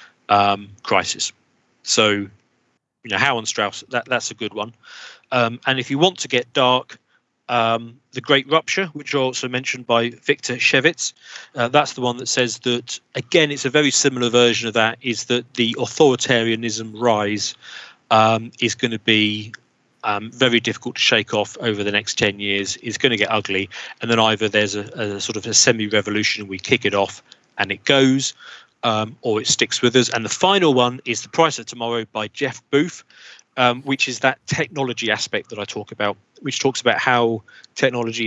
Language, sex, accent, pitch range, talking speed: English, male, British, 110-130 Hz, 190 wpm